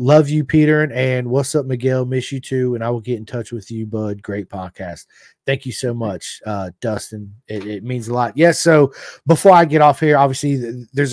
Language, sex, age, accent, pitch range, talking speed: English, male, 30-49, American, 105-140 Hz, 235 wpm